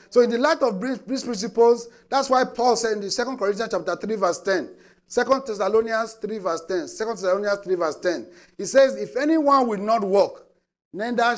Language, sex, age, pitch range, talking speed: English, male, 50-69, 190-240 Hz, 190 wpm